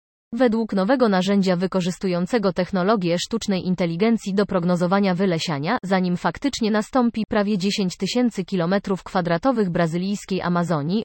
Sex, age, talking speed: female, 20-39, 110 wpm